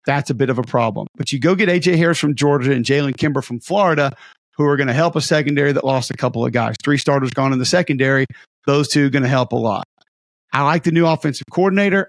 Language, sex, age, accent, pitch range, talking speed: English, male, 50-69, American, 135-165 Hz, 260 wpm